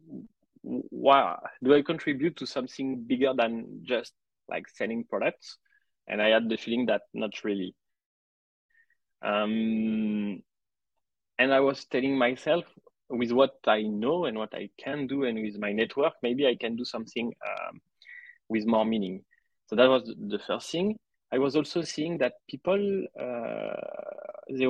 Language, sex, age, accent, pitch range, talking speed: English, male, 20-39, French, 110-145 Hz, 150 wpm